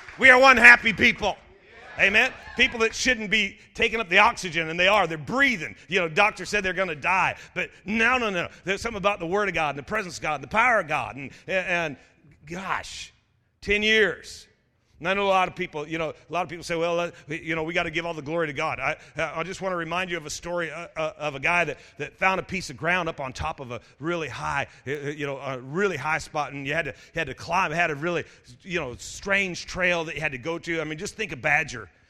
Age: 40-59